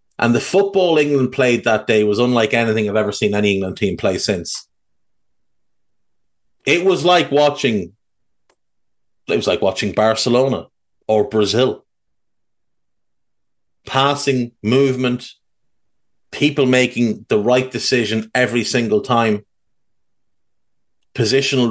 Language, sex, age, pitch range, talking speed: English, male, 30-49, 110-135 Hz, 110 wpm